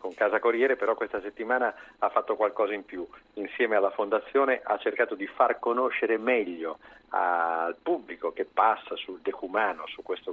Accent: native